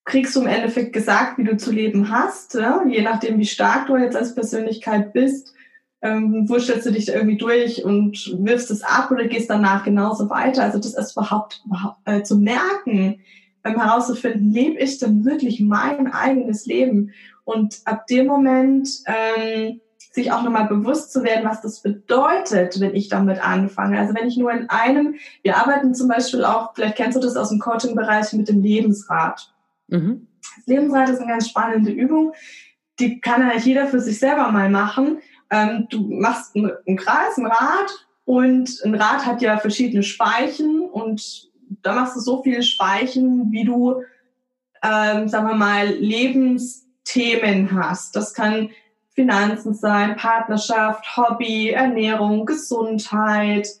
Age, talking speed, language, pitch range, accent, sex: 20-39, 160 wpm, German, 210-255 Hz, German, female